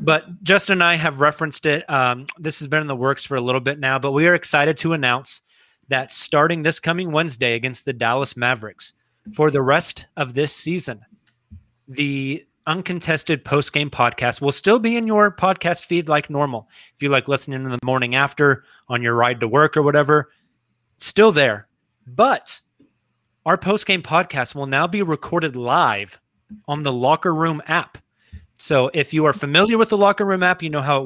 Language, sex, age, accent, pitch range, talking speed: English, male, 30-49, American, 135-165 Hz, 190 wpm